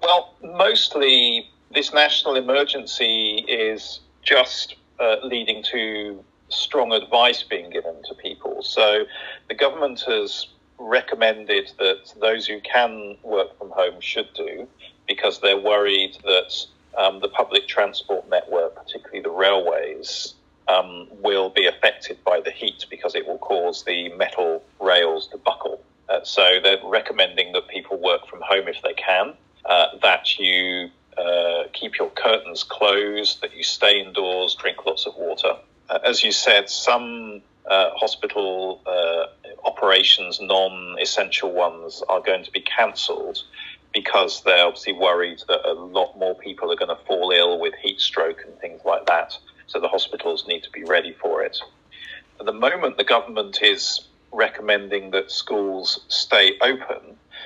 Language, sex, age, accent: Chinese, male, 40-59, British